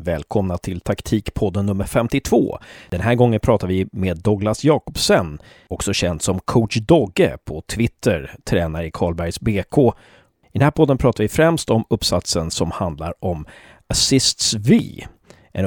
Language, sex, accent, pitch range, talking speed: Swedish, male, native, 95-125 Hz, 150 wpm